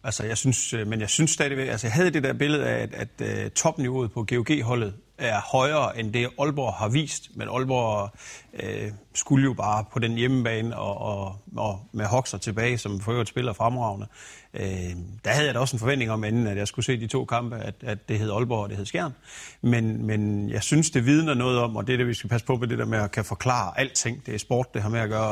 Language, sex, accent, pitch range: Danish, male, native, 105-130 Hz